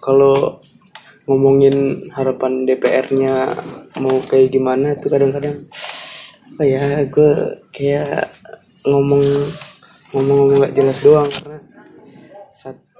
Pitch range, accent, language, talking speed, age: 135-165 Hz, native, Indonesian, 90 wpm, 20-39